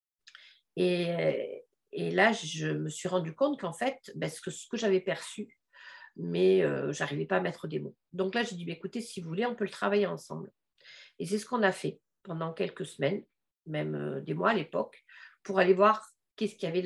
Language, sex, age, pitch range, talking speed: French, female, 40-59, 180-255 Hz, 215 wpm